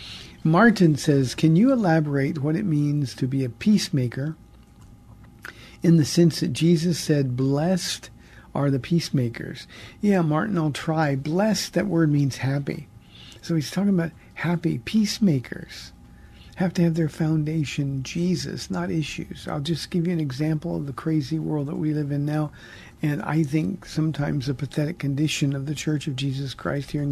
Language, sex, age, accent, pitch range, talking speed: English, male, 50-69, American, 140-170 Hz, 165 wpm